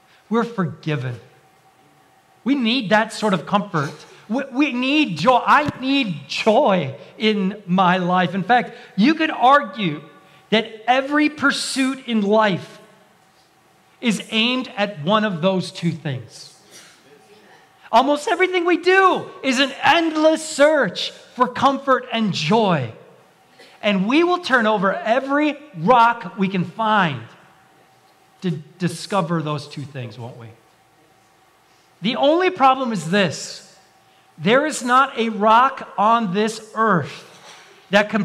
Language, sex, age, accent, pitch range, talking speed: English, male, 40-59, American, 170-245 Hz, 125 wpm